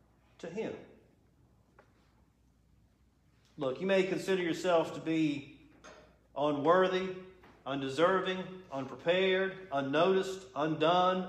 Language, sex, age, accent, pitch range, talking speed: English, male, 50-69, American, 170-215 Hz, 75 wpm